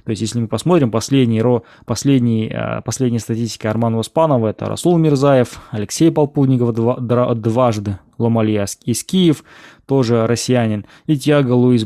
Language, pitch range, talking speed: Russian, 110-135 Hz, 135 wpm